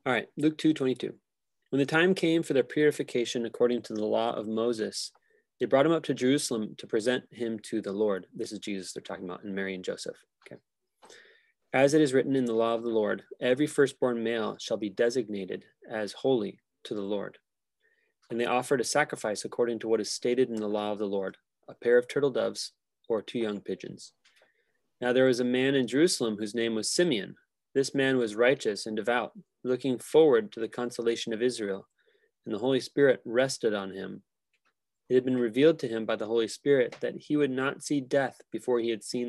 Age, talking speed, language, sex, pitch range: 20-39, 210 wpm, English, male, 115-145 Hz